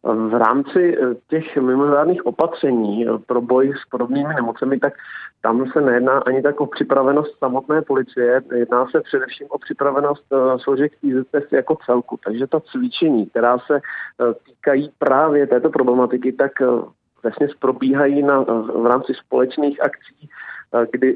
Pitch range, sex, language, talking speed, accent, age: 125-140 Hz, male, Czech, 130 wpm, native, 40-59